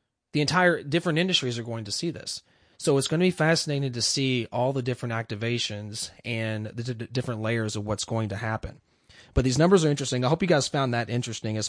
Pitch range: 110-135 Hz